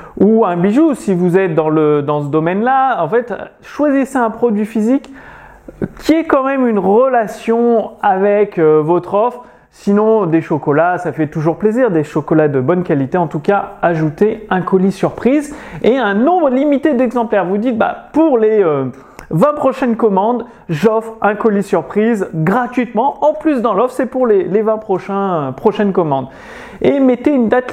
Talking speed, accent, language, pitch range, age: 175 wpm, French, French, 170-245 Hz, 30-49